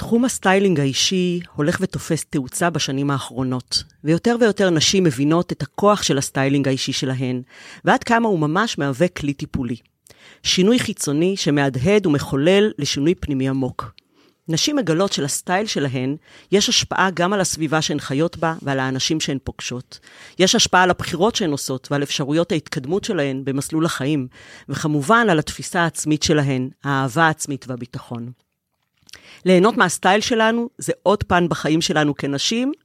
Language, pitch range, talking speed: Hebrew, 140-185 Hz, 140 wpm